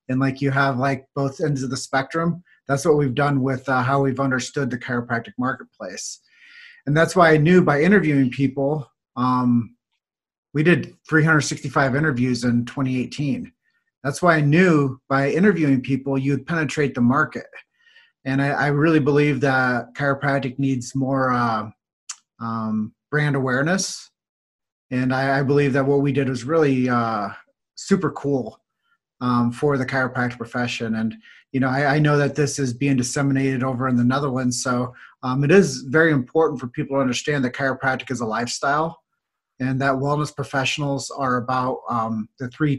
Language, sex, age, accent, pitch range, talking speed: English, male, 30-49, American, 125-155 Hz, 165 wpm